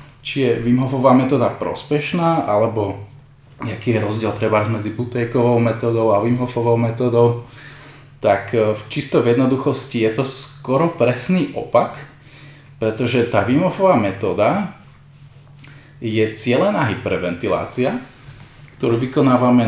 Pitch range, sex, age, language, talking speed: 120-145 Hz, male, 20-39, Slovak, 105 wpm